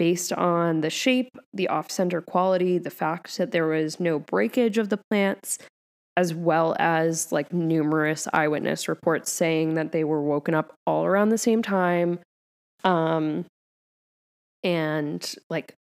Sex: female